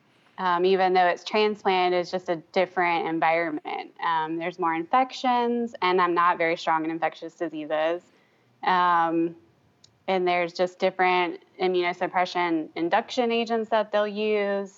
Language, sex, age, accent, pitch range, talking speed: English, female, 20-39, American, 175-215 Hz, 135 wpm